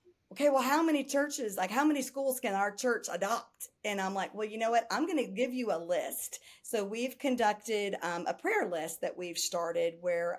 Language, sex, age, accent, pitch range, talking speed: English, female, 40-59, American, 180-250 Hz, 220 wpm